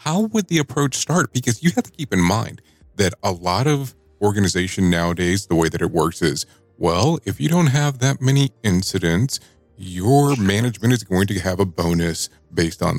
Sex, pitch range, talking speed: male, 90-125 Hz, 195 wpm